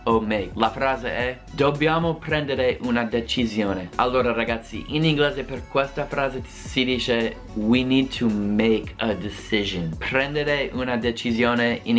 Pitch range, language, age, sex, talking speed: 110-135 Hz, Italian, 20-39, male, 135 wpm